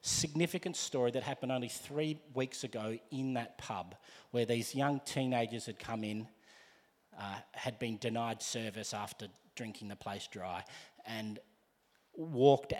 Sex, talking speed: male, 140 wpm